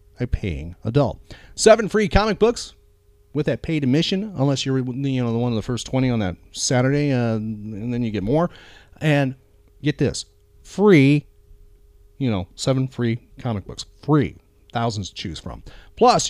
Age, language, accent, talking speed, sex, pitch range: 40-59, English, American, 170 wpm, male, 120-165 Hz